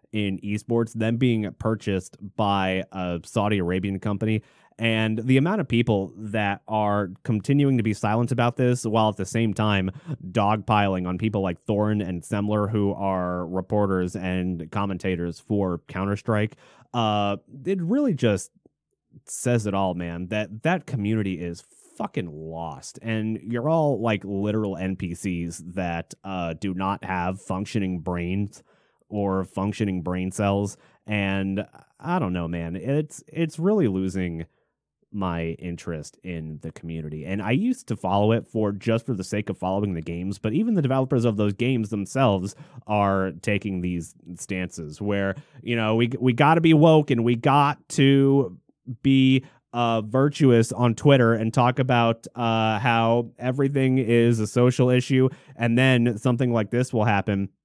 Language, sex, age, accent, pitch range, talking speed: English, male, 30-49, American, 95-120 Hz, 155 wpm